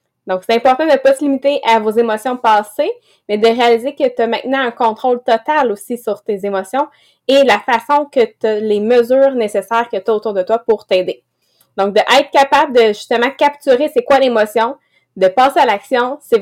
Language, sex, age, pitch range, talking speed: English, female, 20-39, 215-270 Hz, 210 wpm